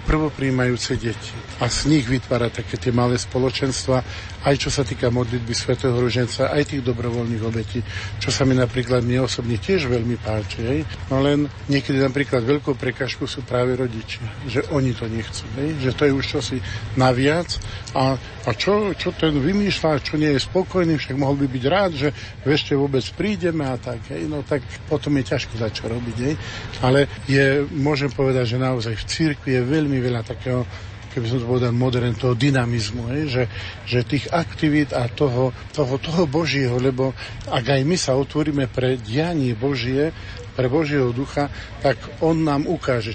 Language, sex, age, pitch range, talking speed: Slovak, male, 50-69, 115-140 Hz, 170 wpm